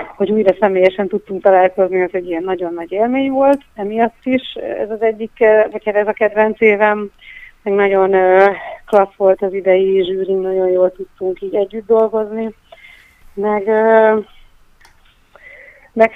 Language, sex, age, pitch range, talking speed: Hungarian, female, 30-49, 185-225 Hz, 135 wpm